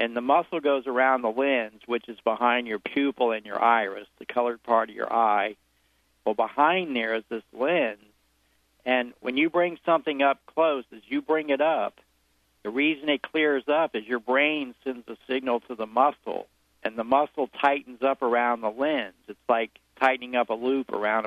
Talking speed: 190 wpm